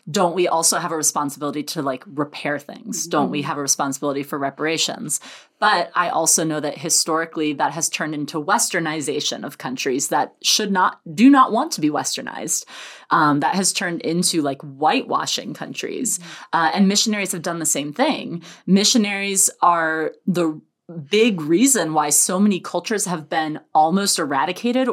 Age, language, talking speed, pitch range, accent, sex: 30-49, English, 165 wpm, 155-210 Hz, American, female